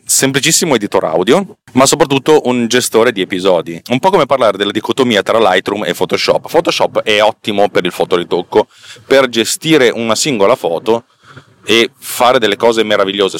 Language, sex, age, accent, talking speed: Italian, male, 30-49, native, 155 wpm